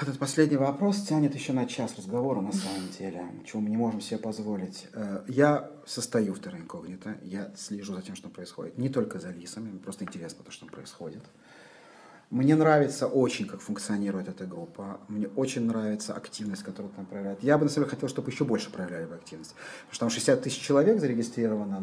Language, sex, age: Russian, male, 40-59